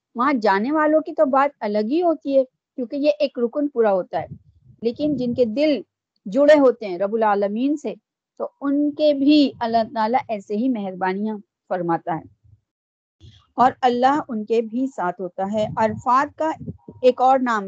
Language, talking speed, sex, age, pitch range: Urdu, 130 wpm, female, 40-59, 215-290 Hz